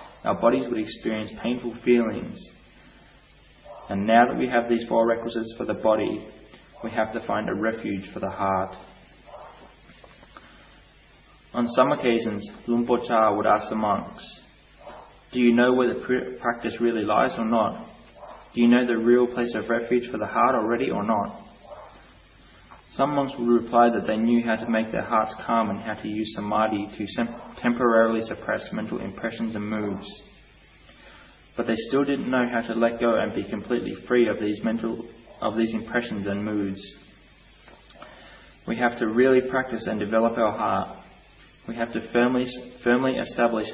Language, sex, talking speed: English, male, 165 wpm